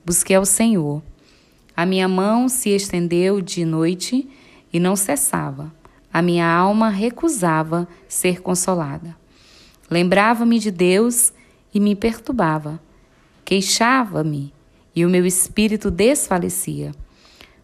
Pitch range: 175-220 Hz